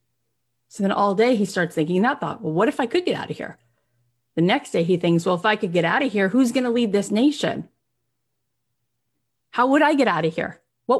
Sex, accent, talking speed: female, American, 245 wpm